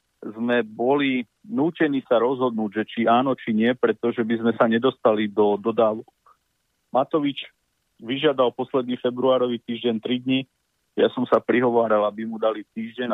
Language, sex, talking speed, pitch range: Slovak, male, 145 wpm, 105-125 Hz